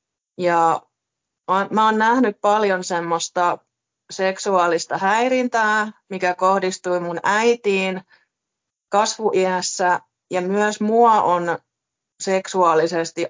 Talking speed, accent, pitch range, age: 80 wpm, native, 170-205 Hz, 30-49